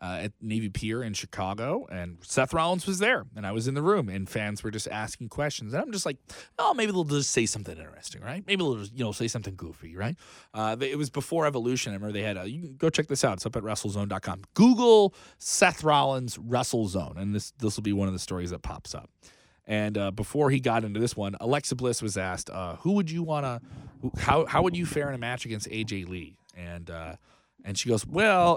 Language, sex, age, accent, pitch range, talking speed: English, male, 30-49, American, 105-145 Hz, 245 wpm